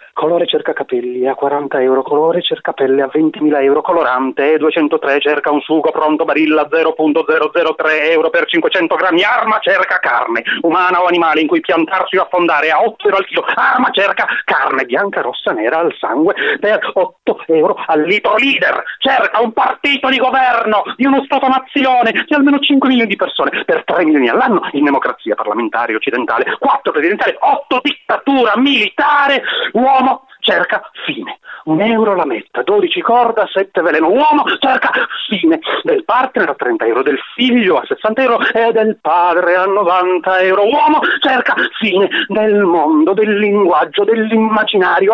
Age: 30-49